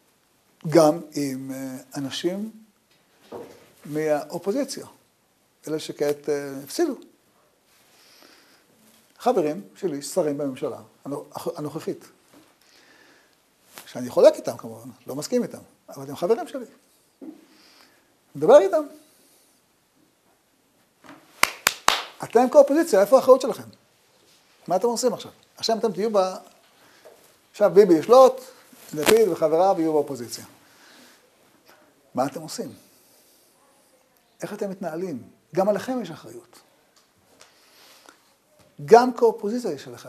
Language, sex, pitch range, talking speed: Hebrew, male, 145-230 Hz, 90 wpm